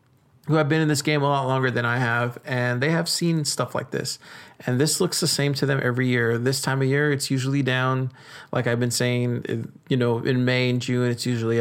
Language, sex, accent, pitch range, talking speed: English, male, American, 125-155 Hz, 245 wpm